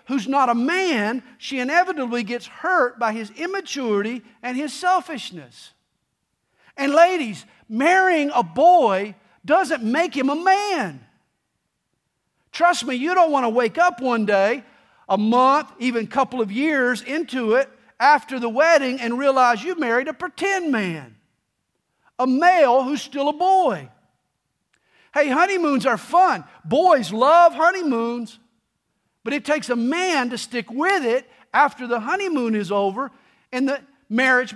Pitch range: 235-310 Hz